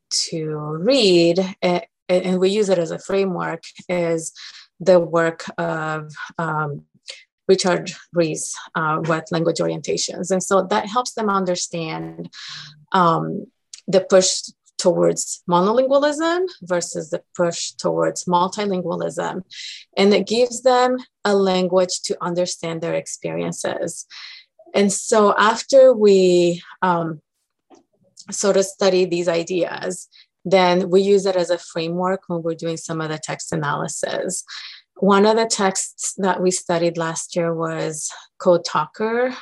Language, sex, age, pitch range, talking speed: English, female, 30-49, 165-195 Hz, 125 wpm